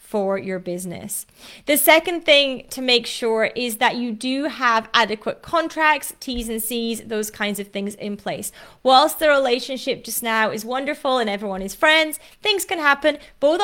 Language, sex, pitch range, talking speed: English, female, 220-285 Hz, 175 wpm